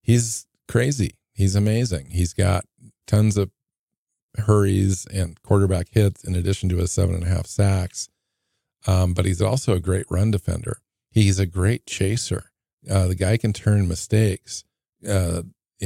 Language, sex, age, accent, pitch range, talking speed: English, male, 50-69, American, 85-100 Hz, 150 wpm